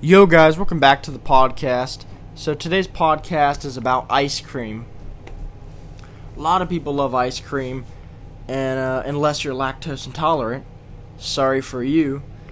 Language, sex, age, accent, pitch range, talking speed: English, male, 20-39, American, 120-150 Hz, 145 wpm